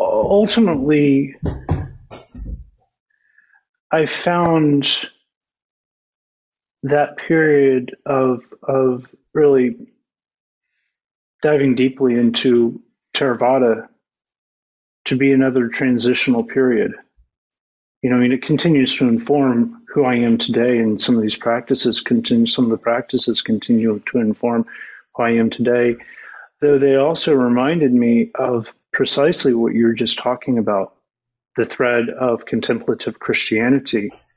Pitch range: 120-145 Hz